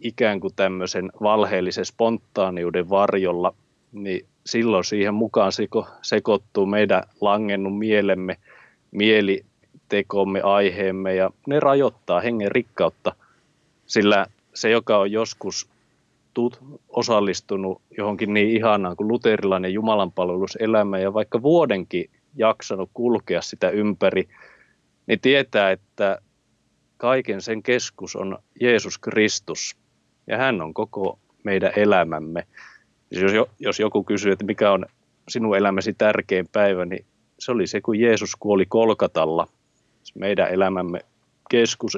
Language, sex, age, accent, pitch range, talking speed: Finnish, male, 30-49, native, 95-115 Hz, 110 wpm